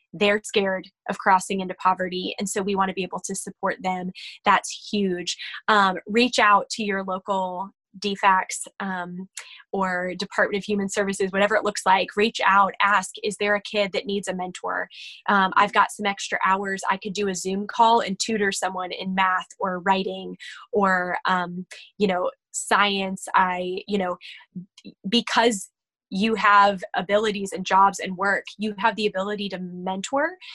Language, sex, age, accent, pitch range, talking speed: English, female, 20-39, American, 185-210 Hz, 170 wpm